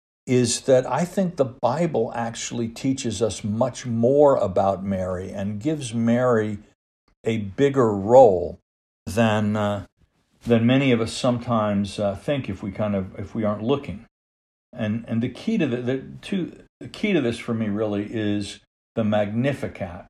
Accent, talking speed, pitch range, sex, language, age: American, 160 wpm, 100-125 Hz, male, English, 60-79